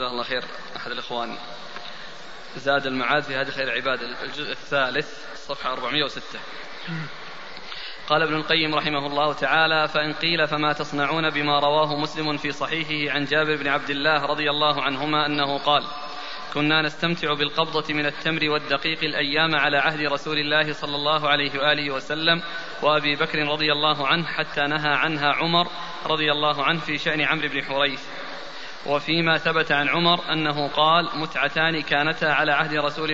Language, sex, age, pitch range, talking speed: Arabic, male, 20-39, 145-160 Hz, 150 wpm